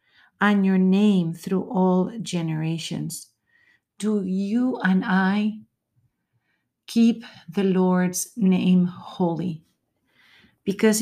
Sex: female